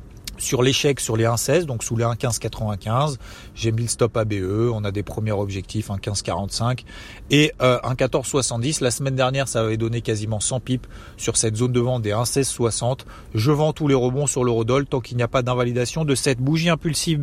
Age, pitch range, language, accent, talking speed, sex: 30-49, 115-150 Hz, French, French, 195 wpm, male